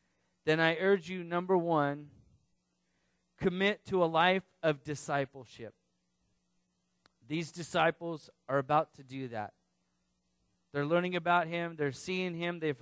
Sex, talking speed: male, 125 wpm